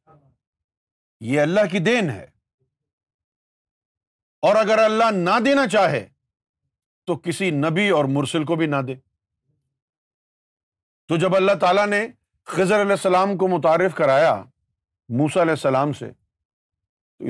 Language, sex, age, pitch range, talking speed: Urdu, male, 50-69, 120-200 Hz, 125 wpm